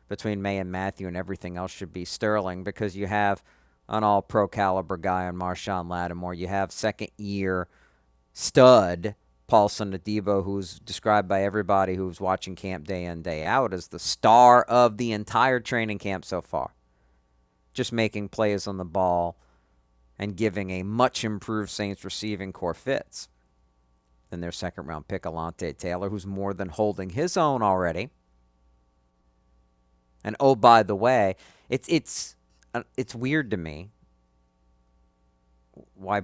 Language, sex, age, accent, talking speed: English, male, 50-69, American, 140 wpm